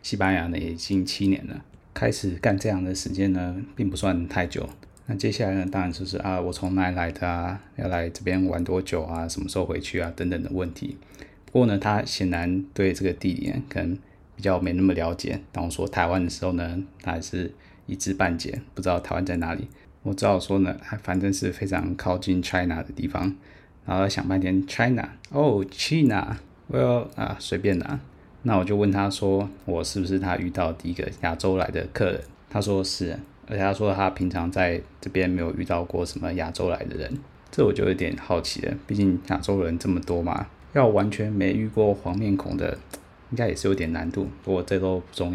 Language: Chinese